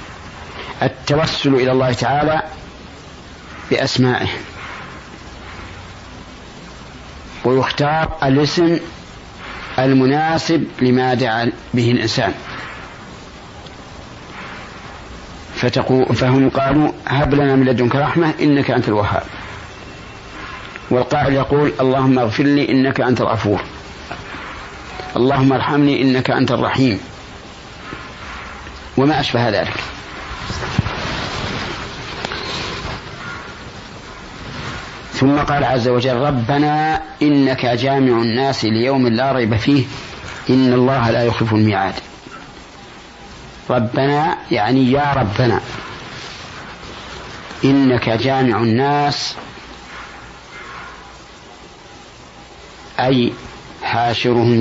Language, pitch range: Arabic, 120-140 Hz